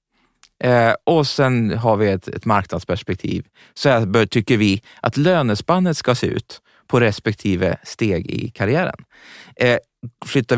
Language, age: Swedish, 30-49